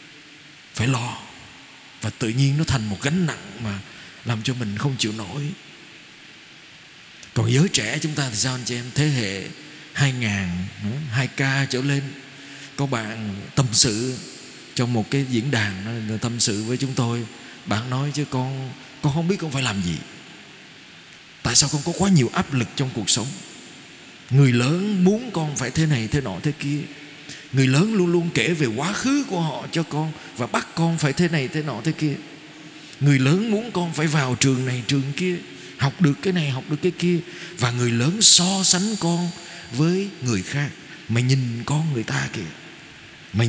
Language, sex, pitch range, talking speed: Vietnamese, male, 120-155 Hz, 190 wpm